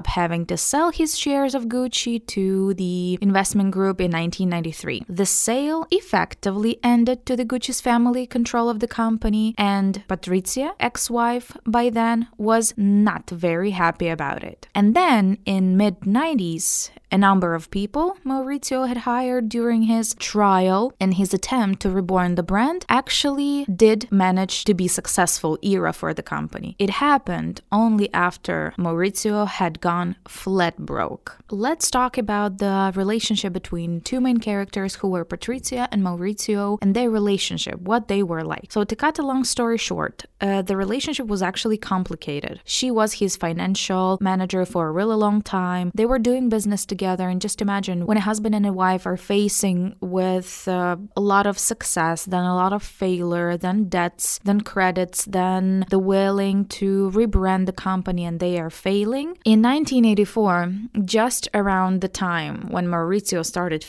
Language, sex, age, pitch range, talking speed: English, female, 20-39, 185-230 Hz, 160 wpm